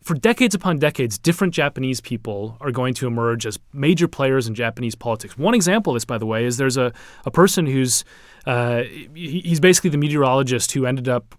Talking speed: 200 wpm